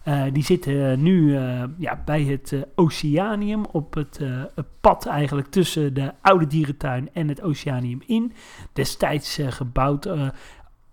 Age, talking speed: 40-59, 150 wpm